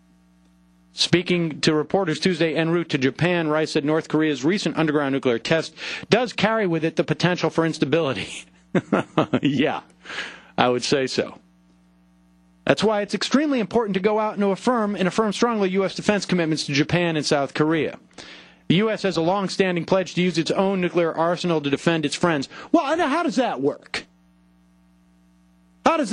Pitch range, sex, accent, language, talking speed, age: 140-195 Hz, male, American, English, 170 wpm, 40-59